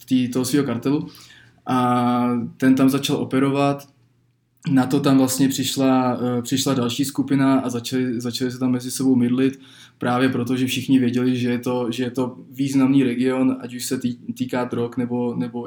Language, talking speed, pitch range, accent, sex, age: Czech, 170 wpm, 120-130 Hz, native, male, 20-39